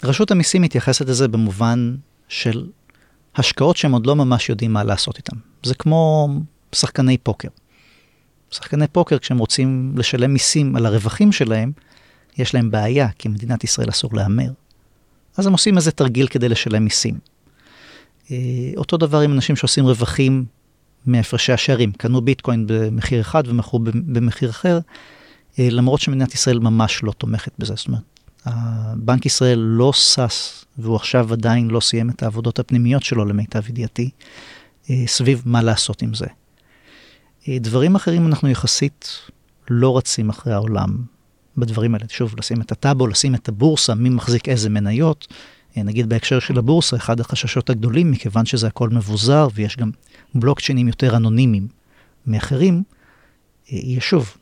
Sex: male